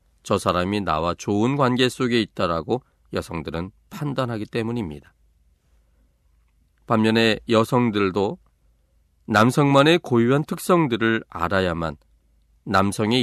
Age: 40-59